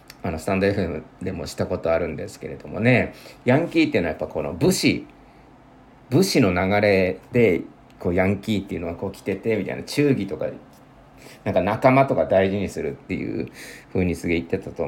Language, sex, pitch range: Japanese, male, 85-125 Hz